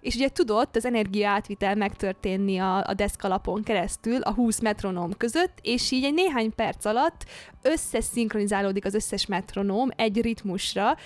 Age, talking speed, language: 20-39, 145 wpm, Hungarian